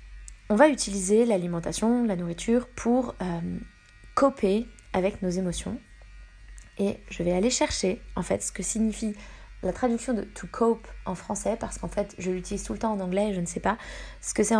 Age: 20-39